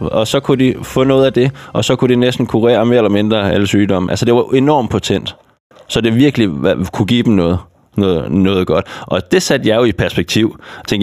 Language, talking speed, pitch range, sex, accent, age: Danish, 240 wpm, 95-120 Hz, male, native, 20-39